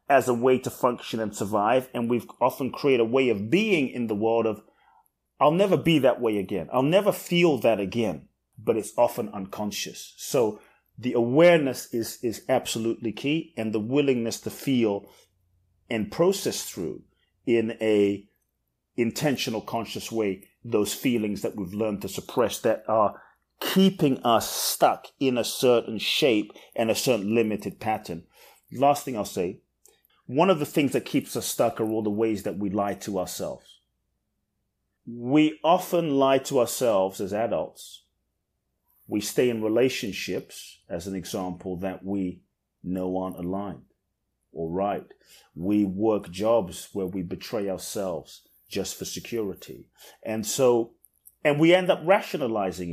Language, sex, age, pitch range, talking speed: English, male, 30-49, 100-130 Hz, 150 wpm